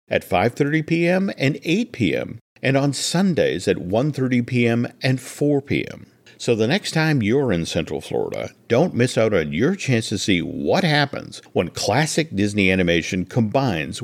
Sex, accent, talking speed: male, American, 160 wpm